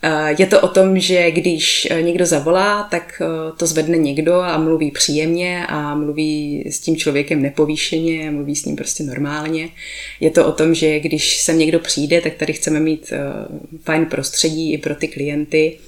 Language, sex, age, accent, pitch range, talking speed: Czech, female, 20-39, native, 150-160 Hz, 175 wpm